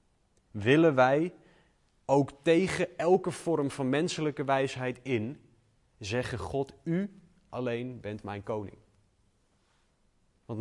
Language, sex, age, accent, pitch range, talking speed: Dutch, male, 30-49, Dutch, 100-140 Hz, 100 wpm